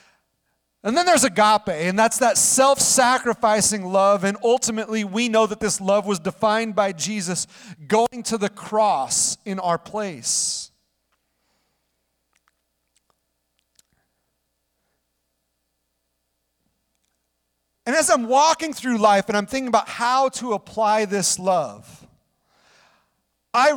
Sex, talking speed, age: male, 110 wpm, 40-59